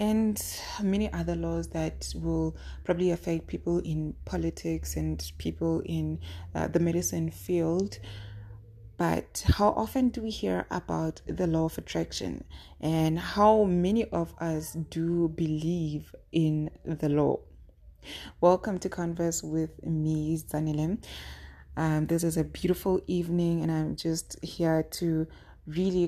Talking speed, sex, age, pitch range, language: 130 wpm, female, 20-39, 150-180 Hz, English